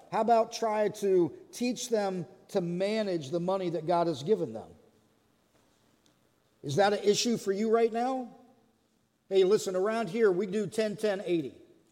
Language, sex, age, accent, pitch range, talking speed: English, male, 40-59, American, 175-220 Hz, 150 wpm